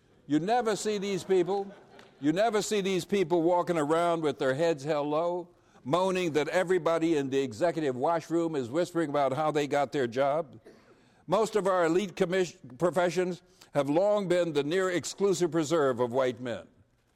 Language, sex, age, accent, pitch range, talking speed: English, male, 60-79, American, 150-195 Hz, 170 wpm